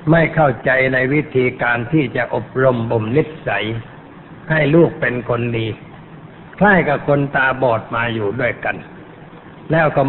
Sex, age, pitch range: male, 60-79, 120-160 Hz